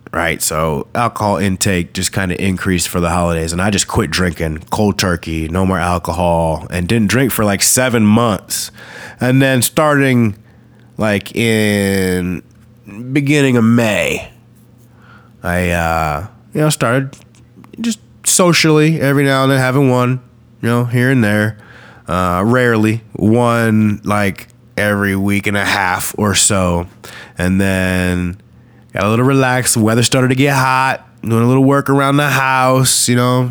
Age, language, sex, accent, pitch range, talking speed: 20-39, English, male, American, 105-135 Hz, 155 wpm